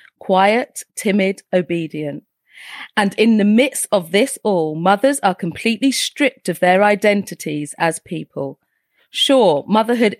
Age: 30-49